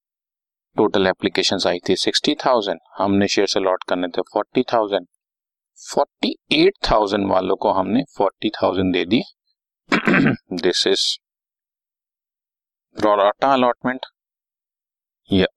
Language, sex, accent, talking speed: Hindi, male, native, 85 wpm